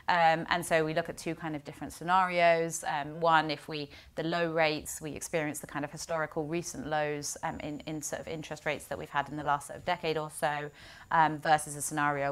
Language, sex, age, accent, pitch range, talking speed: English, female, 30-49, British, 145-165 Hz, 225 wpm